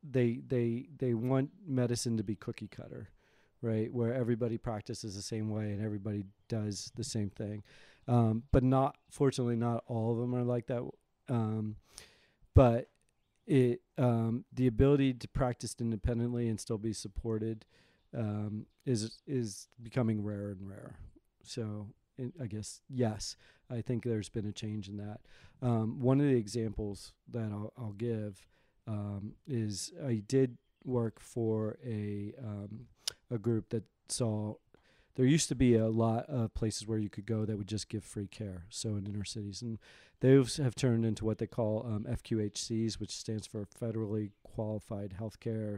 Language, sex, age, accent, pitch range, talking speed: English, male, 40-59, American, 105-120 Hz, 165 wpm